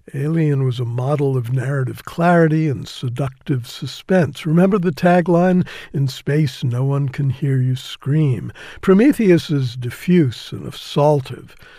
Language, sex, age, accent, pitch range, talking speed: English, male, 60-79, American, 130-165 Hz, 130 wpm